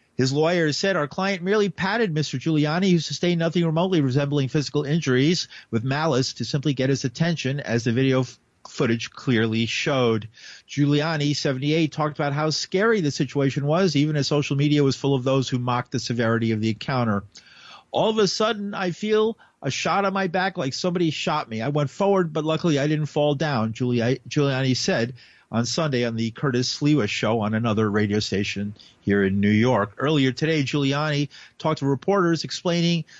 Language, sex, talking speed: English, male, 185 wpm